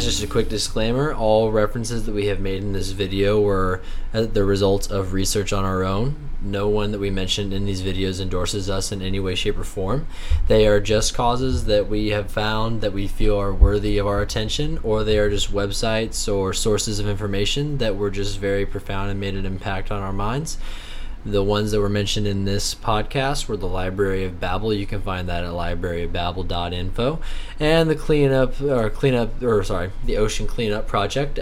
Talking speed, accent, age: 200 wpm, American, 10-29